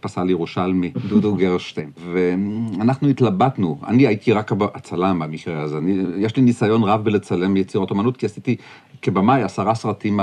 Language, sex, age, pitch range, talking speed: Hebrew, male, 40-59, 95-135 Hz, 145 wpm